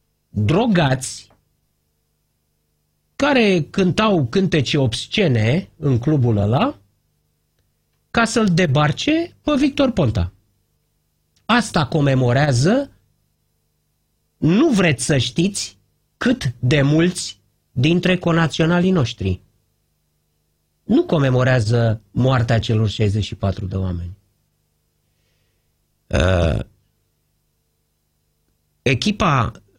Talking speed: 70 wpm